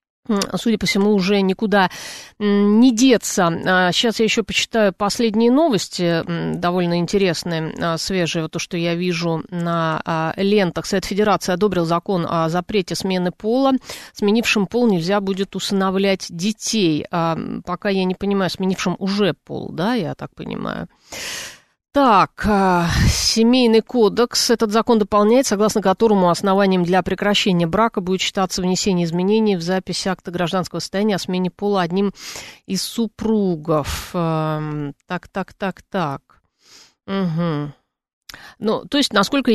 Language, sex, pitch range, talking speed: Russian, female, 175-215 Hz, 130 wpm